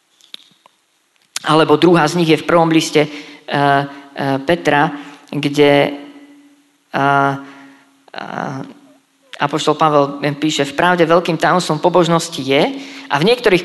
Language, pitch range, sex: Slovak, 145-180 Hz, female